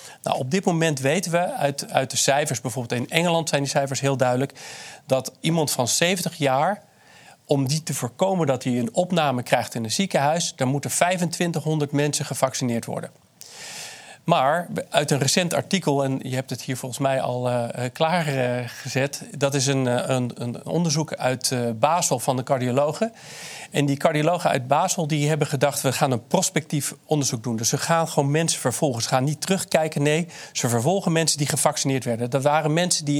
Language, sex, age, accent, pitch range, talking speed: Dutch, male, 40-59, Dutch, 130-160 Hz, 185 wpm